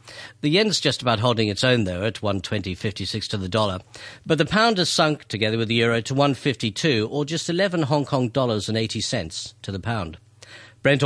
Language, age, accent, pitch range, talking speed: English, 50-69, British, 105-140 Hz, 215 wpm